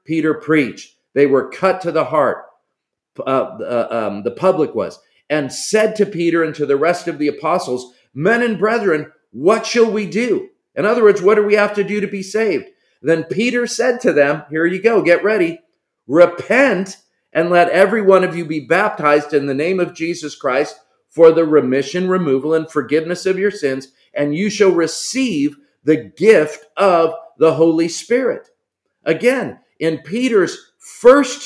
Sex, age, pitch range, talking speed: male, 40-59, 155-215 Hz, 175 wpm